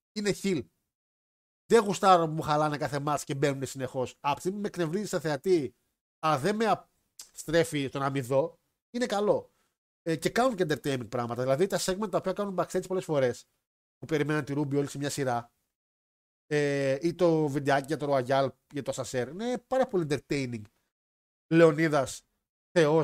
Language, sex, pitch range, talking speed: Greek, male, 130-180 Hz, 175 wpm